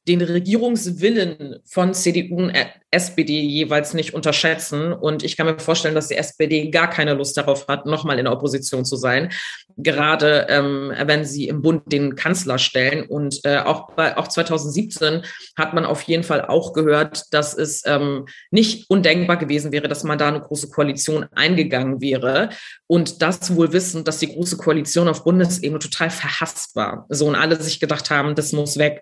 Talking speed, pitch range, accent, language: 180 wpm, 145-165 Hz, German, German